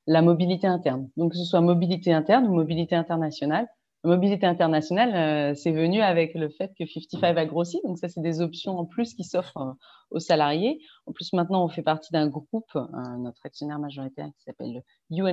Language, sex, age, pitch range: French, female, 30-49, 150-195 Hz